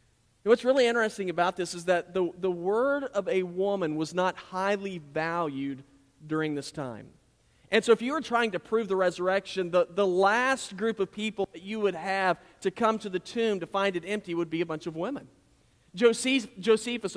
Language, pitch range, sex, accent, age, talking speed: English, 175-215 Hz, male, American, 40-59, 200 wpm